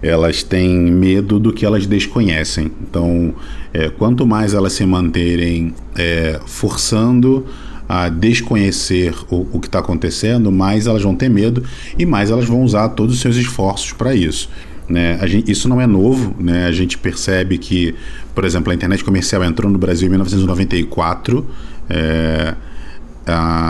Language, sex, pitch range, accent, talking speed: Portuguese, male, 85-105 Hz, Brazilian, 150 wpm